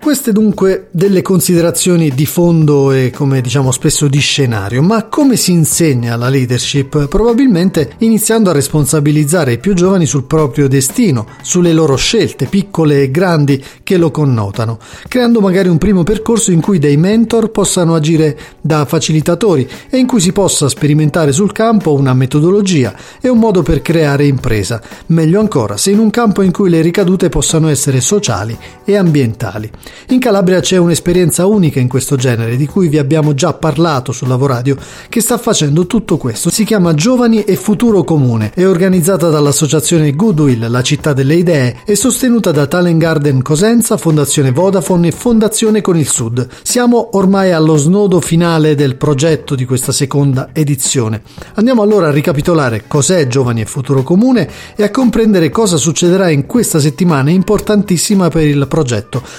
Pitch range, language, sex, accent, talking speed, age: 140-195 Hz, Italian, male, native, 165 wpm, 40-59